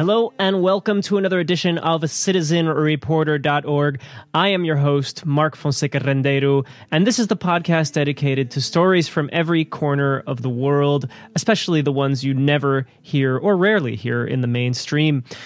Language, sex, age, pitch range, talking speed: English, male, 20-39, 135-175 Hz, 160 wpm